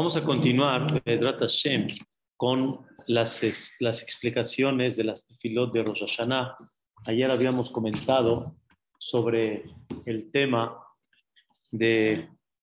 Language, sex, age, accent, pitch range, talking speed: Spanish, male, 40-59, Mexican, 115-130 Hz, 95 wpm